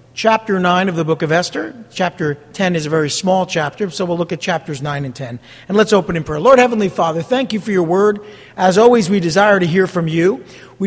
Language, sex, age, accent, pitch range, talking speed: English, male, 50-69, American, 155-230 Hz, 245 wpm